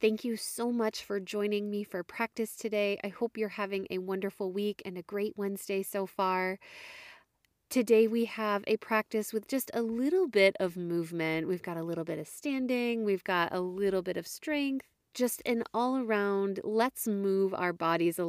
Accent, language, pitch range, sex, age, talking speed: American, English, 180-220 Hz, female, 20-39, 185 wpm